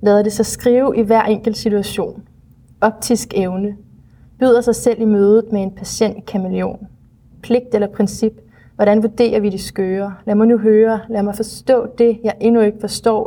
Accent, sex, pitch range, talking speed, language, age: native, female, 205-230 Hz, 170 wpm, Danish, 30-49